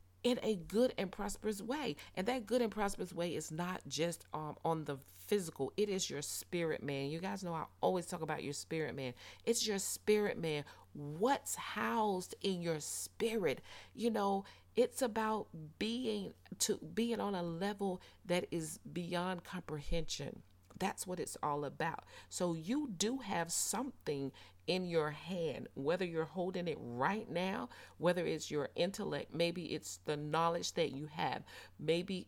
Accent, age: American, 40-59